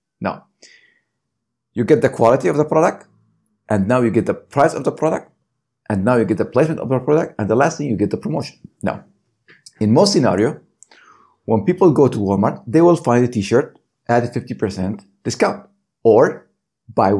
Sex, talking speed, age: male, 190 wpm, 50-69